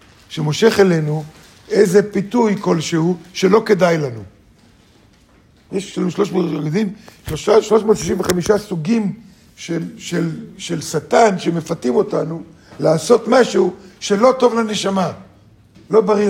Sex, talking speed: male, 100 wpm